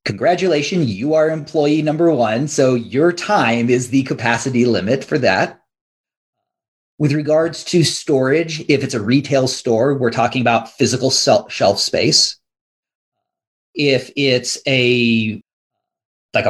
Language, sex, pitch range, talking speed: English, male, 115-140 Hz, 125 wpm